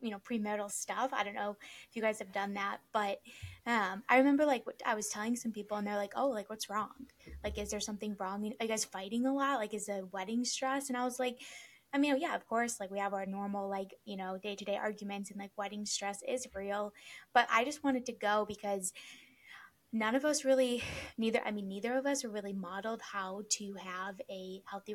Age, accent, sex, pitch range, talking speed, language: 10-29, American, female, 200-235 Hz, 240 wpm, English